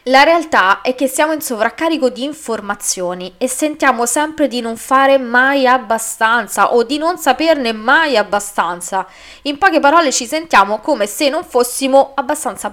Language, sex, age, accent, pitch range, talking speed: Italian, female, 20-39, native, 200-280 Hz, 155 wpm